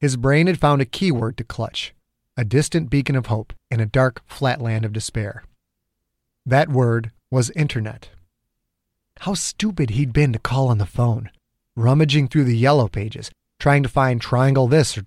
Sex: male